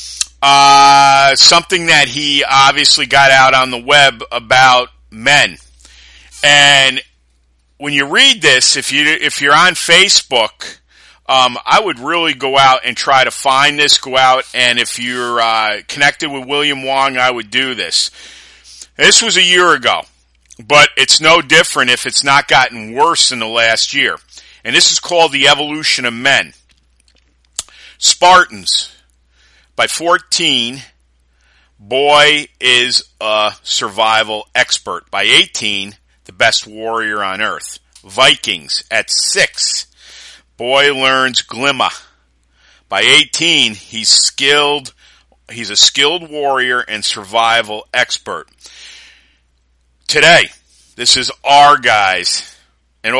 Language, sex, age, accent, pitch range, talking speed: English, male, 40-59, American, 95-140 Hz, 130 wpm